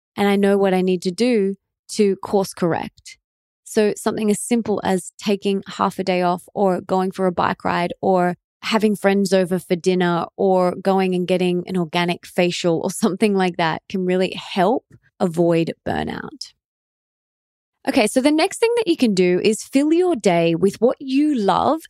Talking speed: 180 wpm